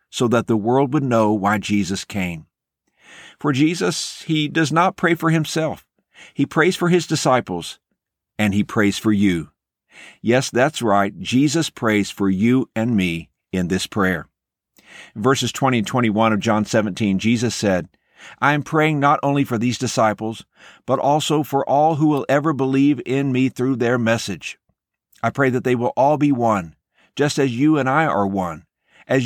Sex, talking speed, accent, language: male, 175 wpm, American, English